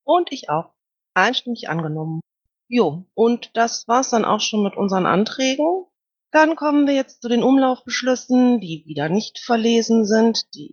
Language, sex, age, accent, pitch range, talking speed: German, female, 30-49, German, 185-255 Hz, 160 wpm